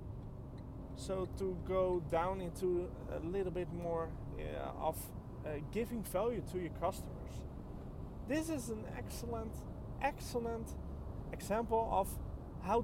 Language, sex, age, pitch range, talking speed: English, male, 30-49, 120-195 Hz, 115 wpm